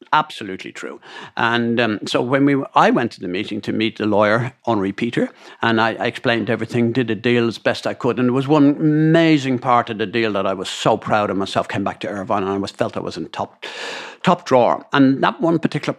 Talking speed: 240 wpm